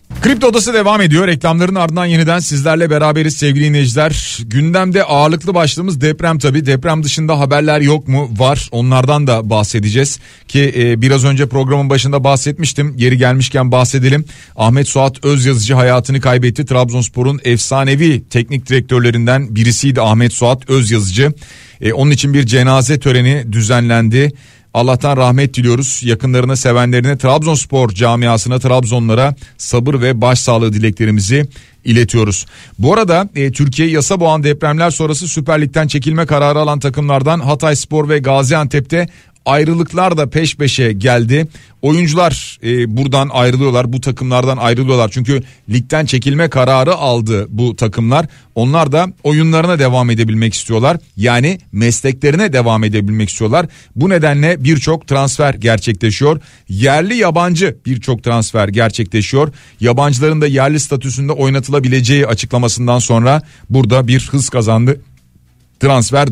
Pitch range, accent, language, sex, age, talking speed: 120-150 Hz, native, Turkish, male, 40-59, 120 wpm